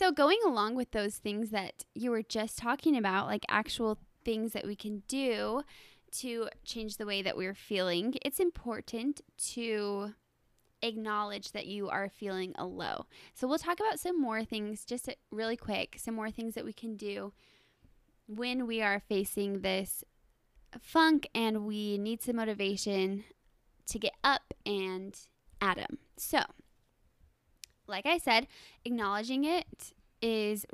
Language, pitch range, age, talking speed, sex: English, 205-245 Hz, 10-29, 150 wpm, female